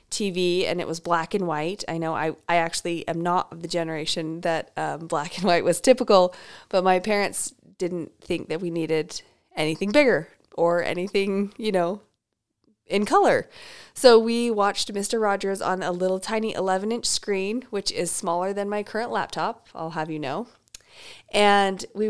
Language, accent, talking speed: English, American, 175 wpm